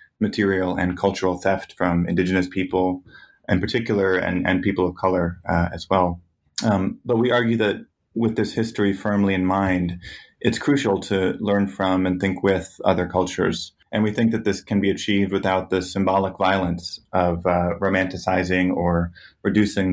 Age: 30-49